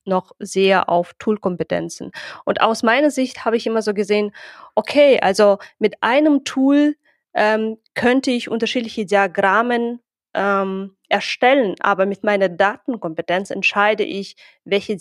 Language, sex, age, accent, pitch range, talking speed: German, female, 20-39, German, 190-225 Hz, 130 wpm